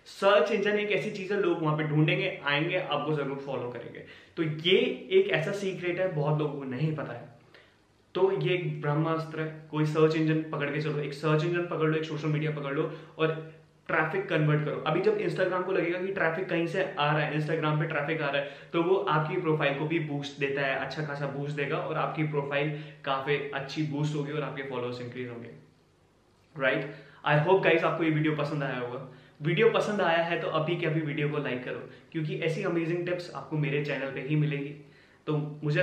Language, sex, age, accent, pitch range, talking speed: Hindi, male, 20-39, native, 140-165 Hz, 210 wpm